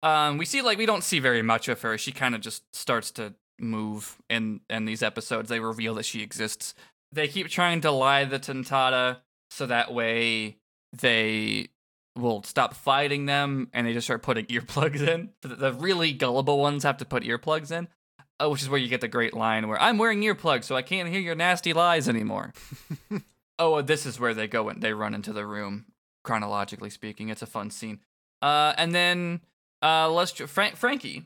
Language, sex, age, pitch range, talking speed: English, male, 20-39, 110-150 Hz, 205 wpm